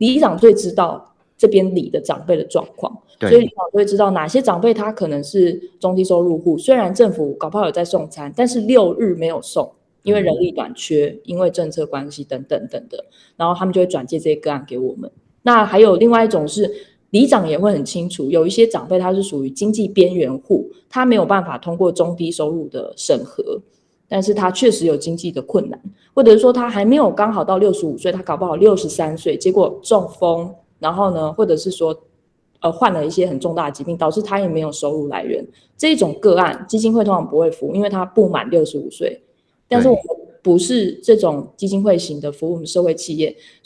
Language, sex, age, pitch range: Chinese, female, 20-39, 165-225 Hz